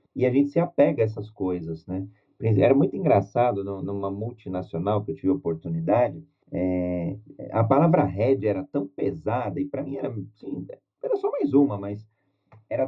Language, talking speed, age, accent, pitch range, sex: Portuguese, 170 wpm, 30-49, Brazilian, 100-140 Hz, male